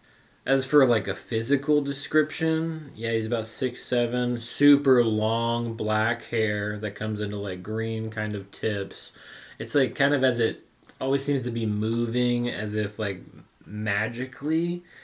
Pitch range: 100-125 Hz